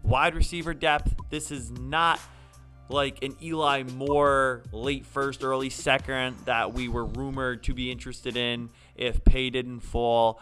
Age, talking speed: 20-39, 150 wpm